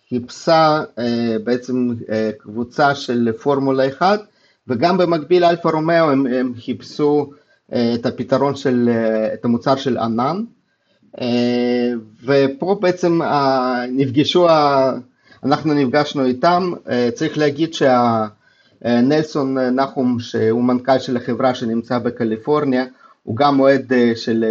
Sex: male